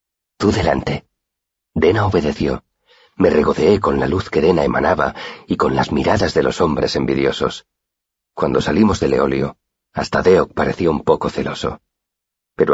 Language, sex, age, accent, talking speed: Spanish, male, 40-59, Spanish, 145 wpm